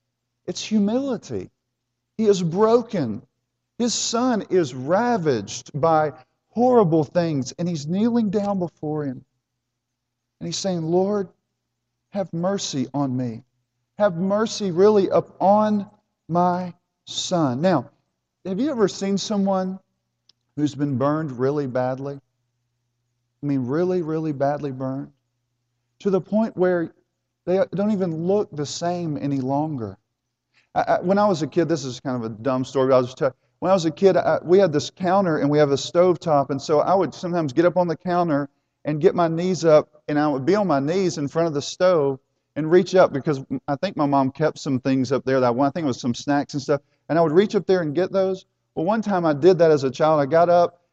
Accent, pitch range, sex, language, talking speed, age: American, 135-185 Hz, male, English, 195 wpm, 40-59